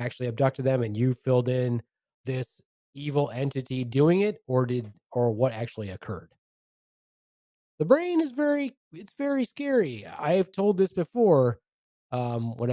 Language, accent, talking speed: English, American, 150 wpm